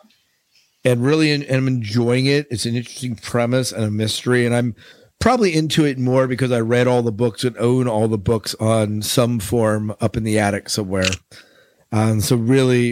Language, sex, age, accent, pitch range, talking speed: English, male, 50-69, American, 110-130 Hz, 190 wpm